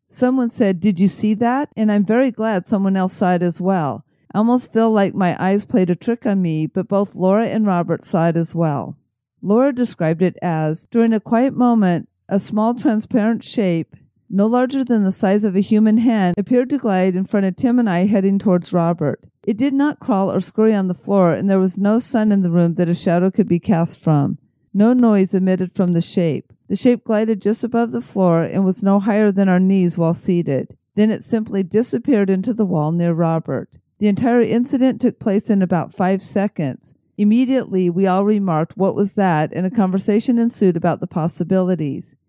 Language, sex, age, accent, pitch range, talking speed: English, female, 50-69, American, 180-220 Hz, 210 wpm